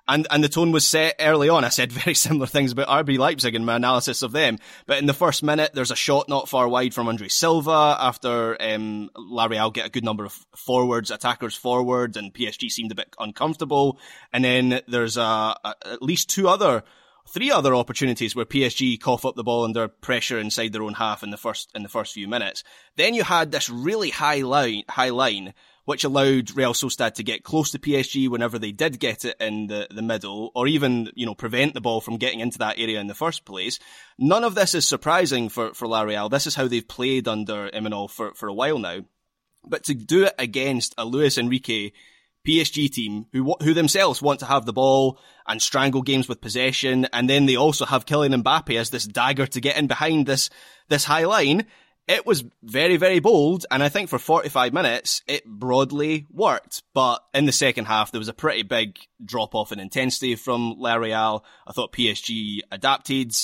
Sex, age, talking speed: male, 20-39, 210 wpm